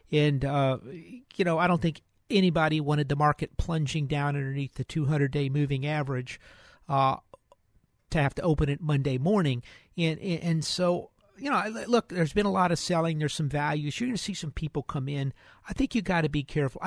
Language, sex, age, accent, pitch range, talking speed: English, male, 50-69, American, 145-180 Hz, 200 wpm